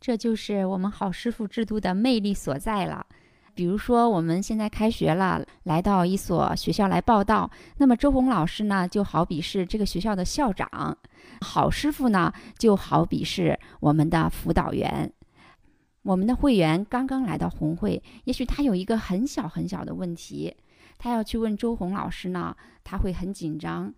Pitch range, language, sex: 175-235 Hz, Chinese, female